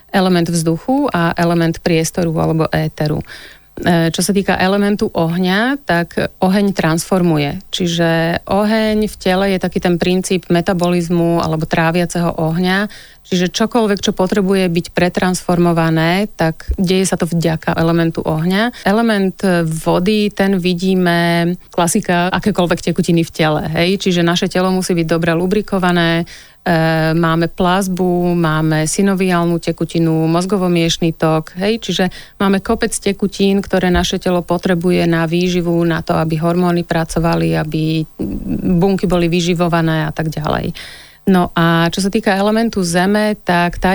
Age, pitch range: 30-49, 165-190 Hz